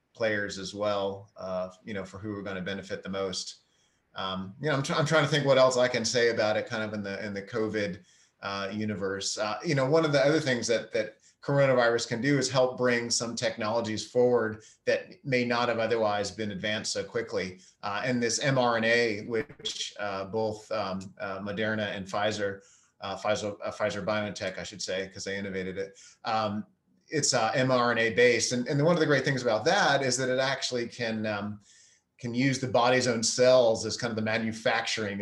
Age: 30-49